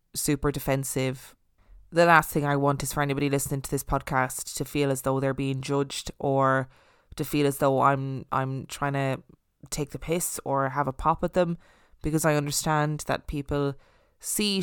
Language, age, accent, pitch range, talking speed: English, 20-39, Irish, 140-175 Hz, 185 wpm